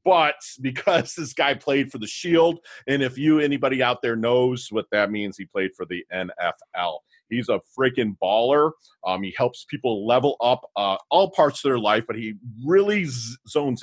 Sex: male